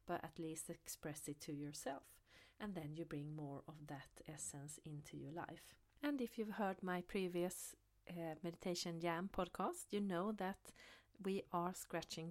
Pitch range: 155-180 Hz